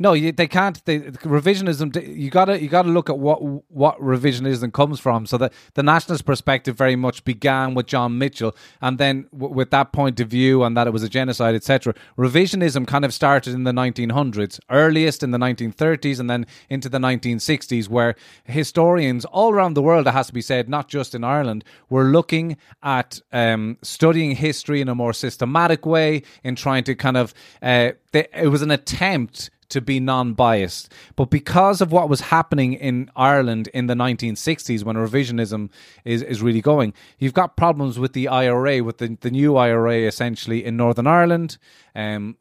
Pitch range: 120-150 Hz